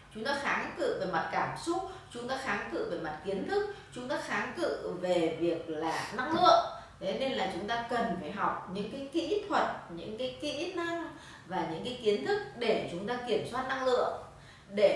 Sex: female